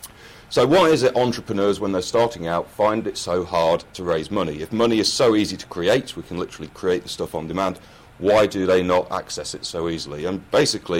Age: 40-59